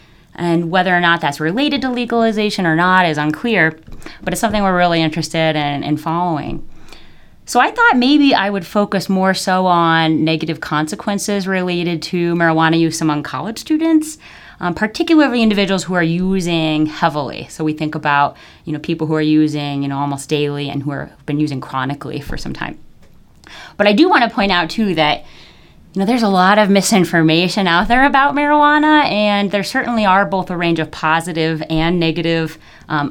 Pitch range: 155-200 Hz